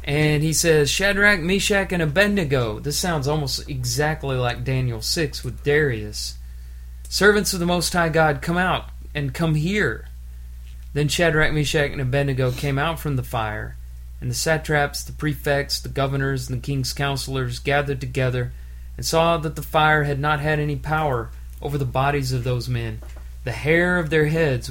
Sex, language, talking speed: male, English, 170 wpm